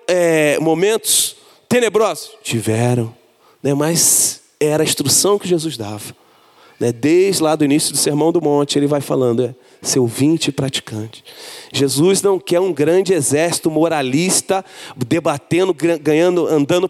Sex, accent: male, Brazilian